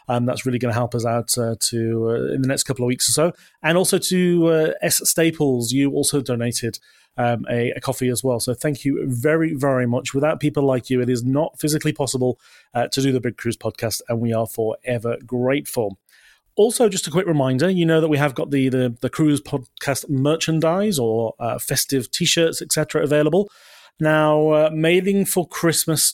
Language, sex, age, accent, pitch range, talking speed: English, male, 30-49, British, 125-150 Hz, 205 wpm